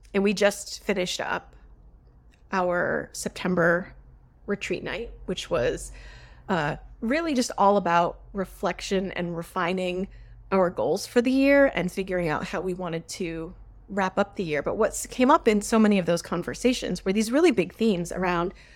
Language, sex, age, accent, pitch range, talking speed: English, female, 30-49, American, 170-215 Hz, 165 wpm